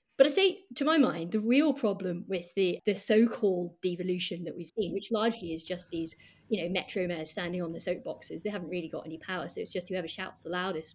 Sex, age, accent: female, 30-49, British